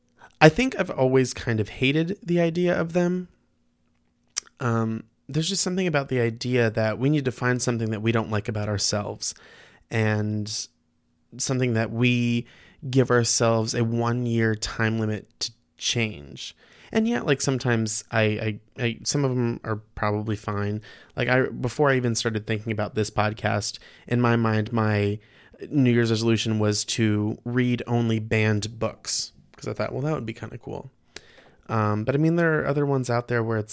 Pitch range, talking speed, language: 110-130 Hz, 175 wpm, English